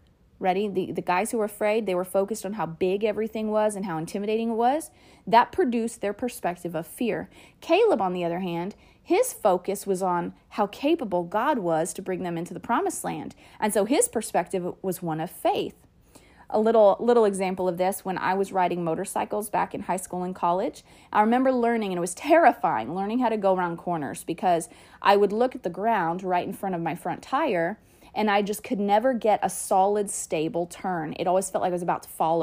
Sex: female